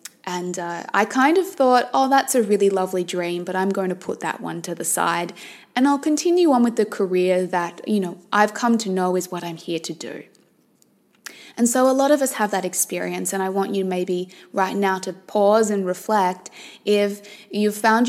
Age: 20-39